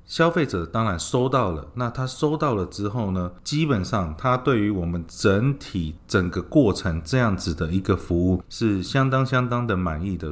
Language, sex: Chinese, male